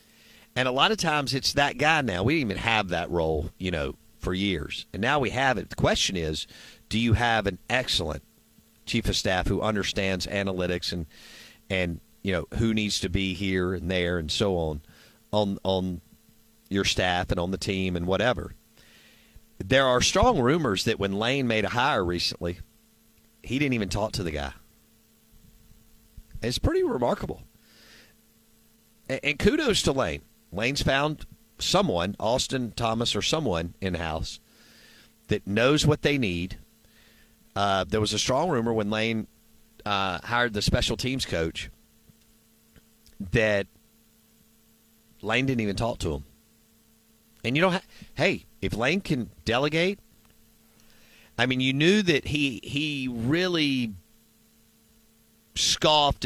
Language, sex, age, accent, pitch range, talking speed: English, male, 50-69, American, 95-120 Hz, 150 wpm